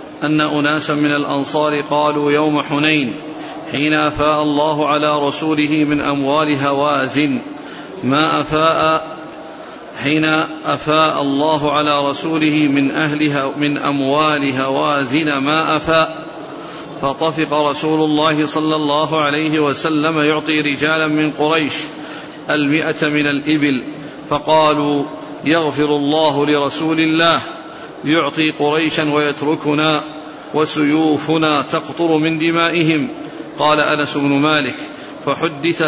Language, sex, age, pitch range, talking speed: Arabic, male, 50-69, 145-155 Hz, 100 wpm